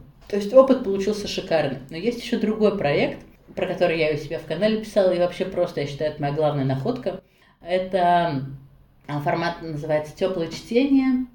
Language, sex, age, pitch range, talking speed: Russian, female, 30-49, 150-200 Hz, 170 wpm